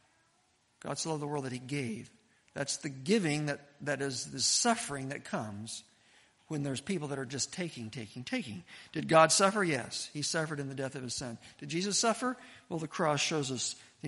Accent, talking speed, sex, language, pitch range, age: American, 205 wpm, male, English, 130-195 Hz, 50-69